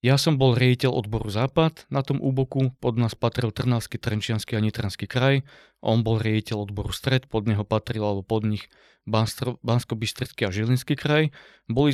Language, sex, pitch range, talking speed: Slovak, male, 110-125 Hz, 165 wpm